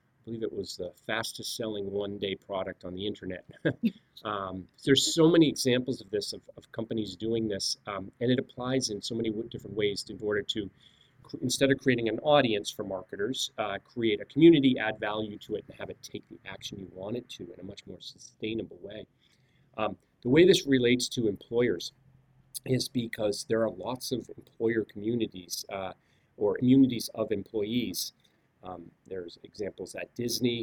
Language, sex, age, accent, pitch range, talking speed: English, male, 30-49, American, 105-130 Hz, 180 wpm